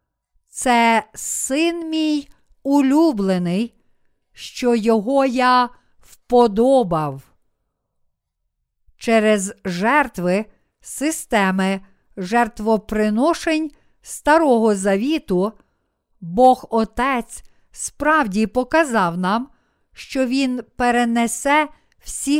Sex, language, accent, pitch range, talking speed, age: female, Ukrainian, native, 210-285 Hz, 60 wpm, 50-69